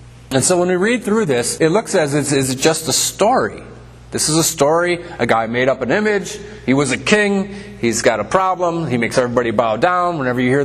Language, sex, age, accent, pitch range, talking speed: English, male, 30-49, American, 125-160 Hz, 230 wpm